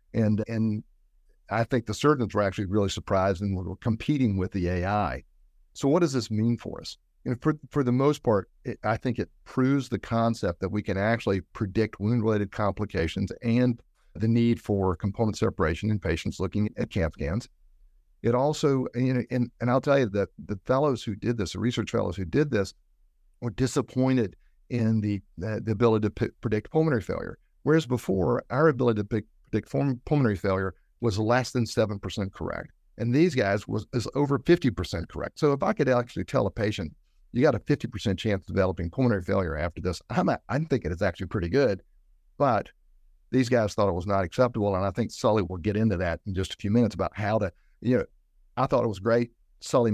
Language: English